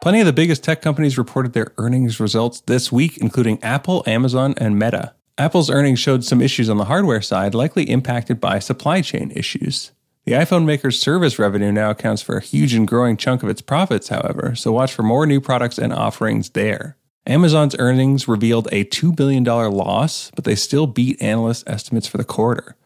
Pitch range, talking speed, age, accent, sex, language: 110-135 Hz, 195 wpm, 30-49, American, male, English